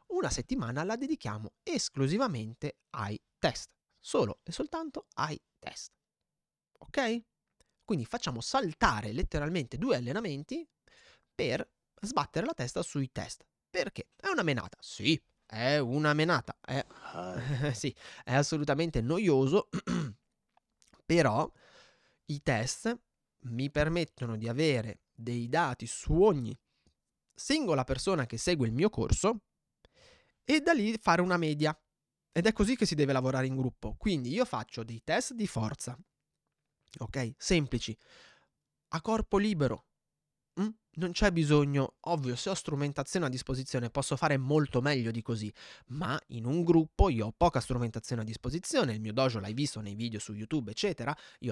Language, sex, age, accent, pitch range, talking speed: Italian, male, 30-49, native, 120-170 Hz, 140 wpm